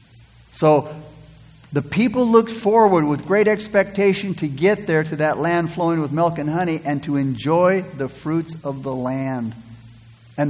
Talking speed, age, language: 160 wpm, 60-79, English